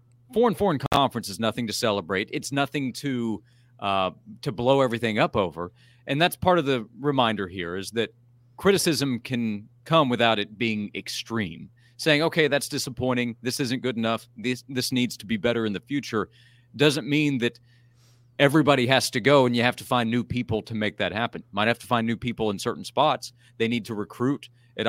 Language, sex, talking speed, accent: English, male, 195 wpm, American